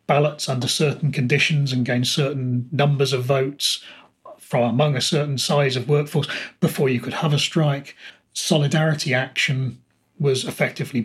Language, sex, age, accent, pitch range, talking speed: English, male, 30-49, British, 125-155 Hz, 145 wpm